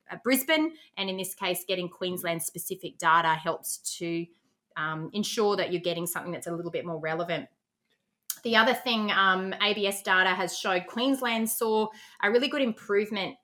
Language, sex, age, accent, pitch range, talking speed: English, female, 20-39, Australian, 185-230 Hz, 165 wpm